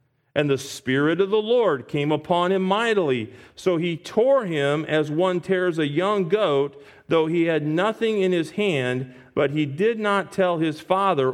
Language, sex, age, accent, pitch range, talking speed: English, male, 40-59, American, 135-180 Hz, 180 wpm